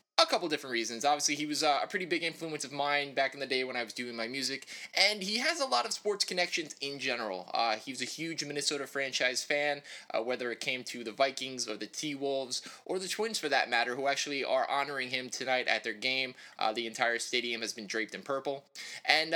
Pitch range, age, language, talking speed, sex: 130-175 Hz, 20-39, English, 240 wpm, male